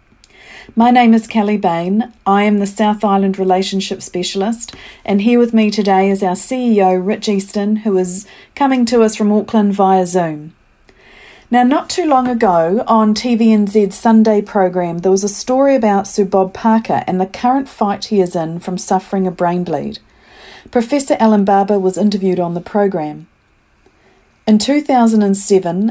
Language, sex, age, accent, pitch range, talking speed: English, female, 40-59, Australian, 190-230 Hz, 160 wpm